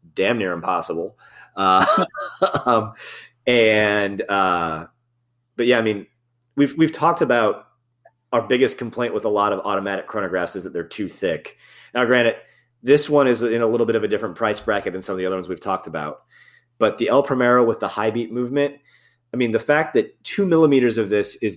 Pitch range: 105-130 Hz